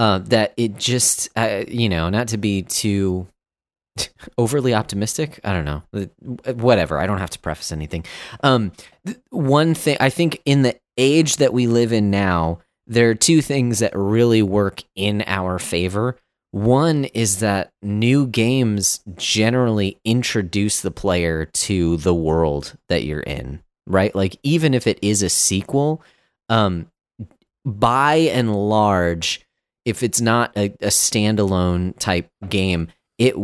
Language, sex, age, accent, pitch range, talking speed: English, male, 30-49, American, 90-120 Hz, 145 wpm